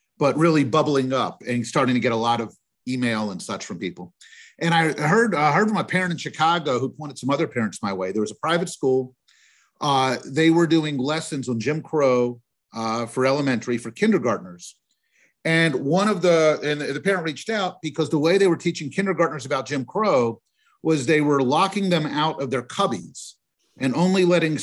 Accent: American